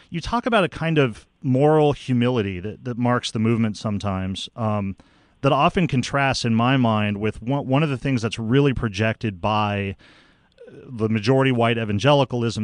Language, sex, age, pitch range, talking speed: English, male, 40-59, 110-140 Hz, 165 wpm